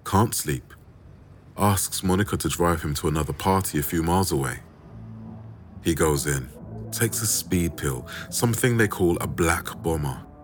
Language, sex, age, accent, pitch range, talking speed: English, male, 30-49, British, 85-110 Hz, 155 wpm